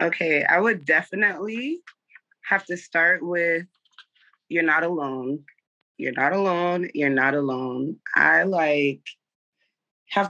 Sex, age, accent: female, 20-39, American